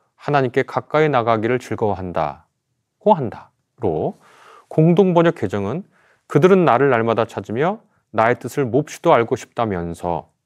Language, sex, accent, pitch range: Korean, male, native, 110-160 Hz